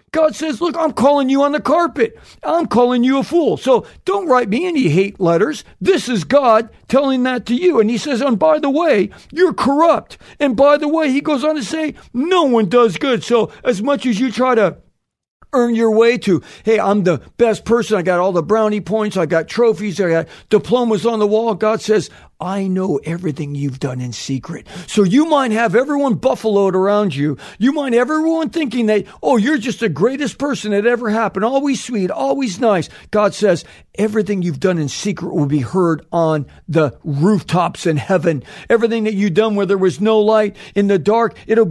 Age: 50-69